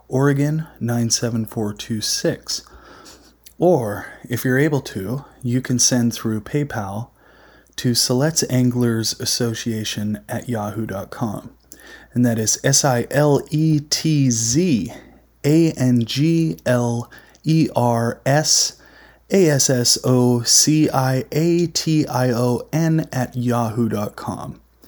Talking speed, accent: 115 wpm, American